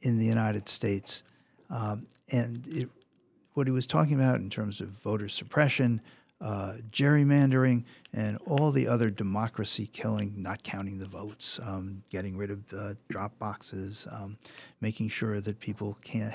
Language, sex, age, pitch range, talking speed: English, male, 50-69, 105-125 Hz, 155 wpm